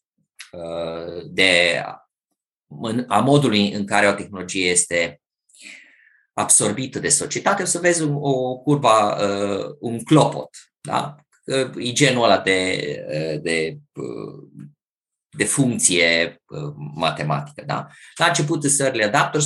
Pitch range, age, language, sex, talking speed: 95-135 Hz, 20-39, Romanian, male, 105 wpm